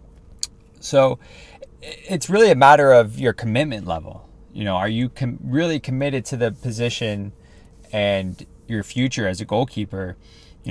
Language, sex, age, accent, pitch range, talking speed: English, male, 20-39, American, 95-120 Hz, 140 wpm